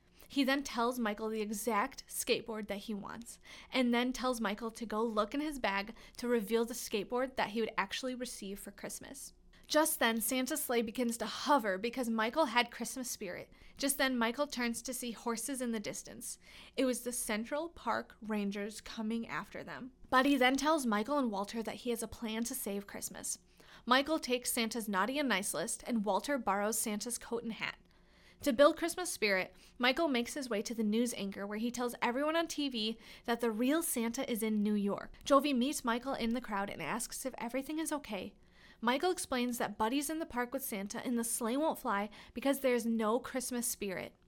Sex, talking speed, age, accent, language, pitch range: female, 200 wpm, 30-49, American, English, 215-260 Hz